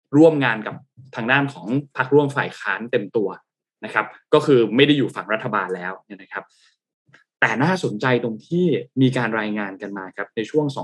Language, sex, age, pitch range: Thai, male, 20-39, 120-150 Hz